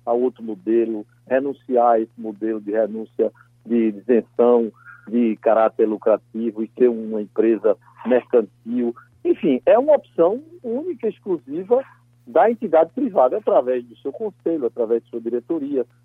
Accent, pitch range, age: Brazilian, 115-150 Hz, 60-79